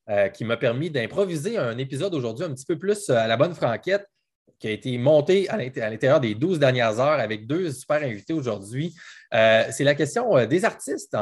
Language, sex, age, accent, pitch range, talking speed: French, male, 20-39, Canadian, 115-165 Hz, 185 wpm